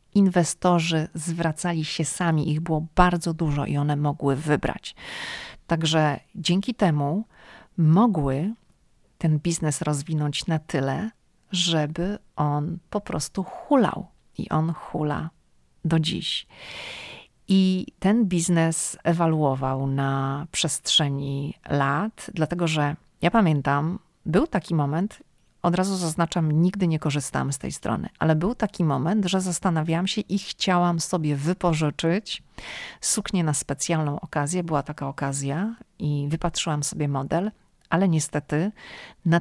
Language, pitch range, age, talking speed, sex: Polish, 150-185 Hz, 40-59, 120 wpm, female